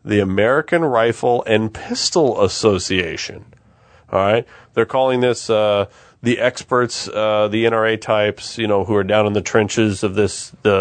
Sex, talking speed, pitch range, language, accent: male, 160 wpm, 95-115 Hz, English, American